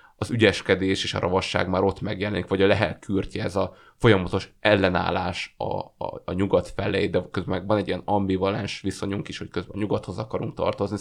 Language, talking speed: Hungarian, 185 wpm